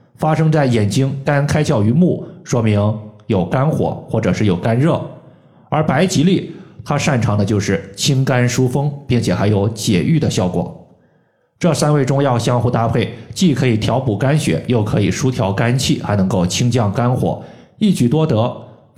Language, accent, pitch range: Chinese, native, 110-155 Hz